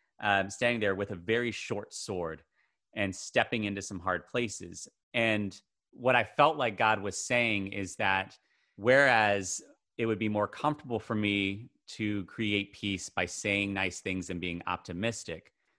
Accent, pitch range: American, 95-115 Hz